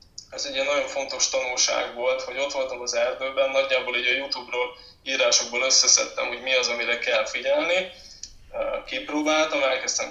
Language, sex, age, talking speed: Hungarian, male, 20-39, 140 wpm